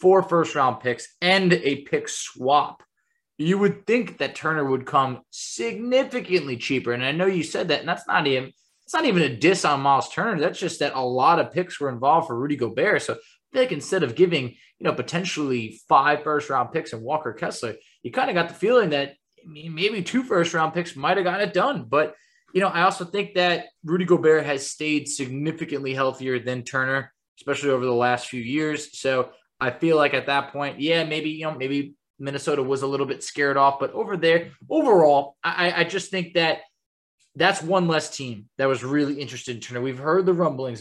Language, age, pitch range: English, 20-39, 135-185 Hz